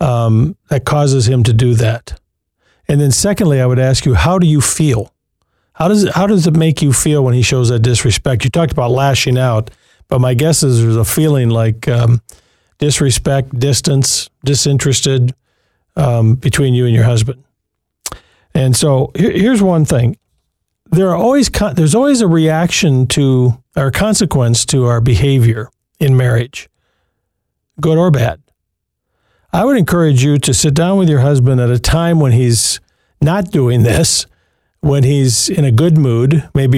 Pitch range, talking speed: 120-150 Hz, 170 wpm